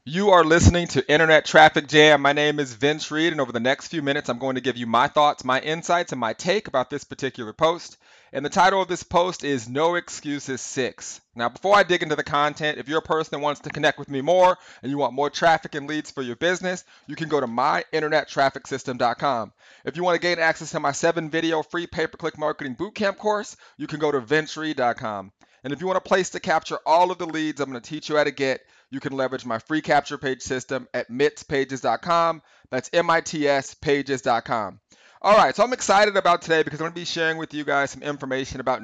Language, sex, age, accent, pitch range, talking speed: English, male, 30-49, American, 135-165 Hz, 230 wpm